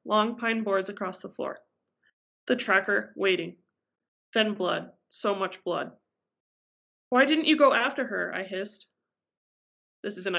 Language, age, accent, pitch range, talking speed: English, 20-39, American, 205-250 Hz, 145 wpm